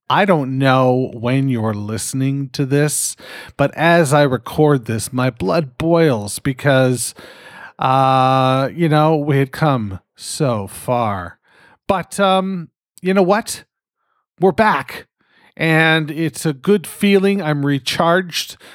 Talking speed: 125 wpm